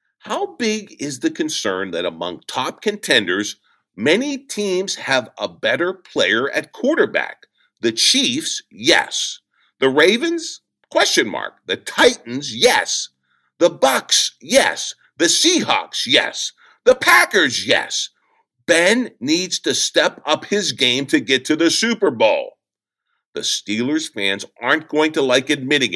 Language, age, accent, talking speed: English, 50-69, American, 130 wpm